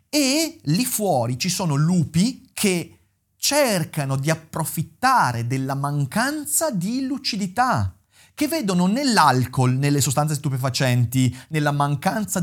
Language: Italian